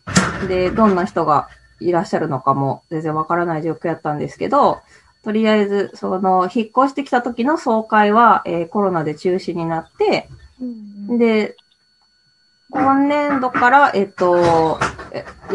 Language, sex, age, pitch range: Japanese, female, 20-39, 175-245 Hz